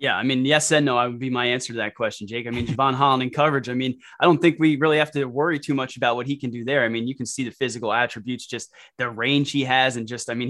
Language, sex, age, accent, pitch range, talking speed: English, male, 20-39, American, 125-150 Hz, 320 wpm